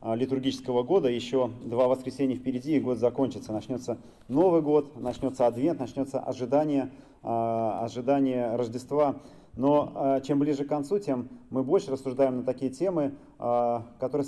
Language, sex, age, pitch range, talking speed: Russian, male, 30-49, 125-145 Hz, 130 wpm